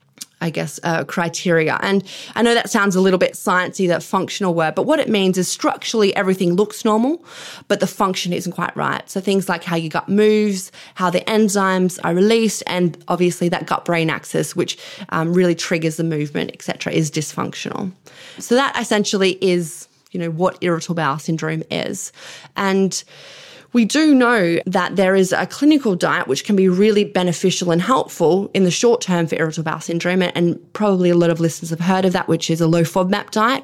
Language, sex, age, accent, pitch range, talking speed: English, female, 20-39, Australian, 175-215 Hz, 195 wpm